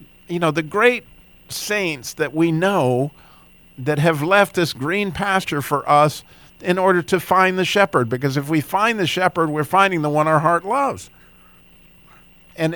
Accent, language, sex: American, English, male